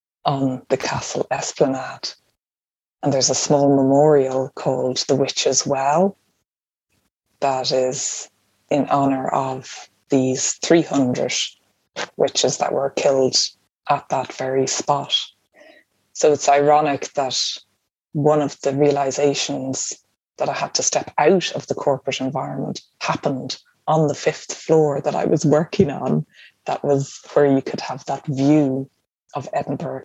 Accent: Irish